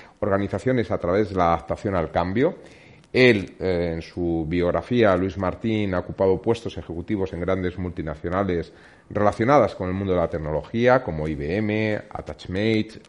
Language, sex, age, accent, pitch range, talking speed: Spanish, male, 40-59, Spanish, 85-110 Hz, 145 wpm